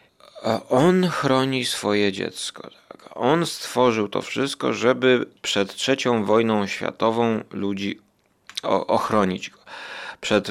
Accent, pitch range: native, 100-125 Hz